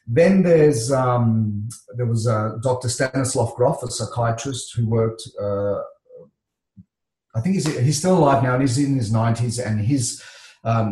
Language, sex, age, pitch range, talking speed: English, male, 40-59, 110-130 Hz, 160 wpm